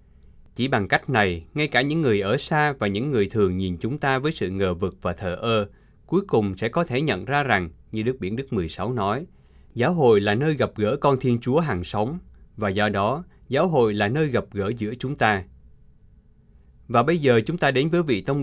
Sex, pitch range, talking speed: male, 95-135 Hz, 230 wpm